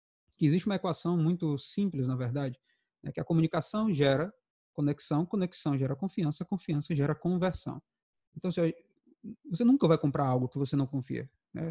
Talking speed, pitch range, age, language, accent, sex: 160 wpm, 145-190 Hz, 20-39, Portuguese, Brazilian, male